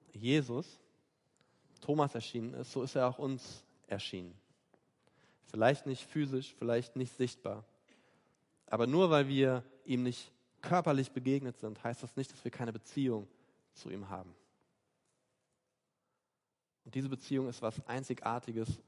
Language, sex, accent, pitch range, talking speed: German, male, German, 115-135 Hz, 130 wpm